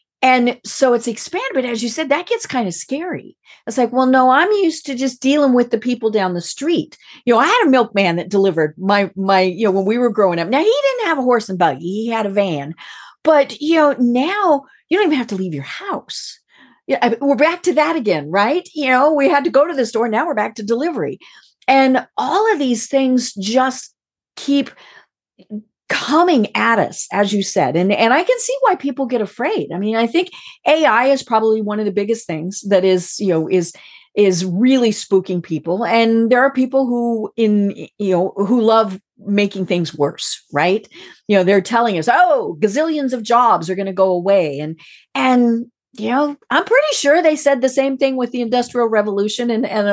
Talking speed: 215 wpm